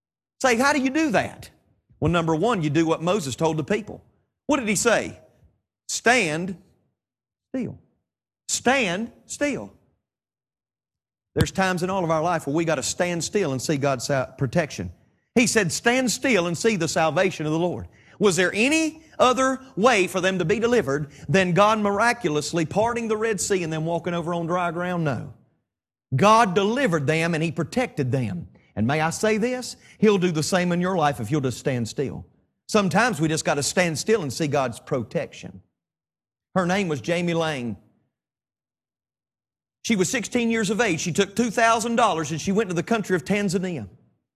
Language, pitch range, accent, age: English, 155-215 Hz, American, 40-59